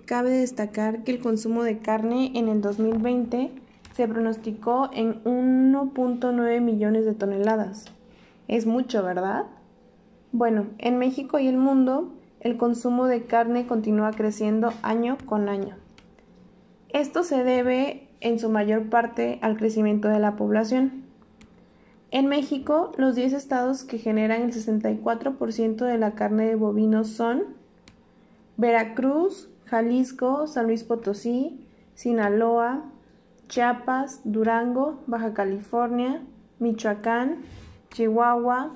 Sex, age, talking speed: female, 20-39, 115 wpm